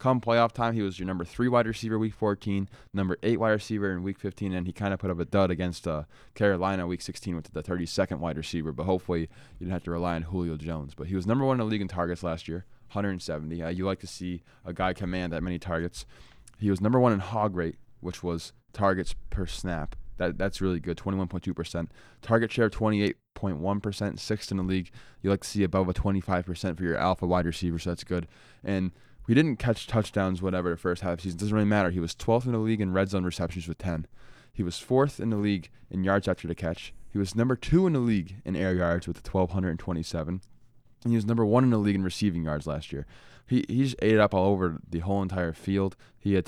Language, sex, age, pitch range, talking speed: English, male, 20-39, 85-110 Hz, 245 wpm